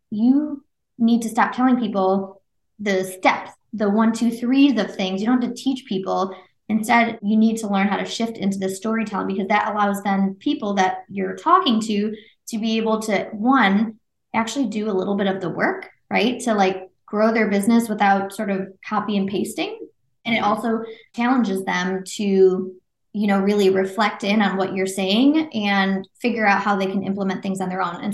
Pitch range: 195-225 Hz